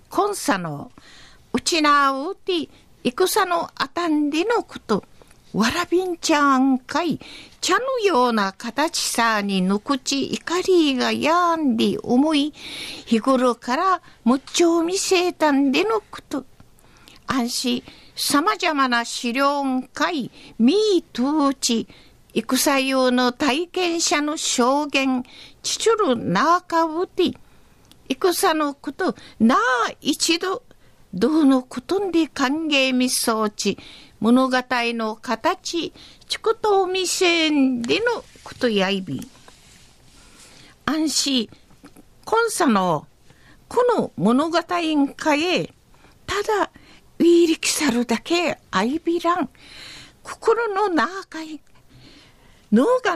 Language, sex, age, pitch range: Japanese, female, 50-69, 250-350 Hz